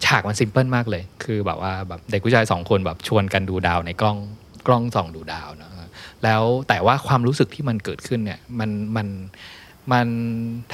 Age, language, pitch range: 20-39, Thai, 95-120 Hz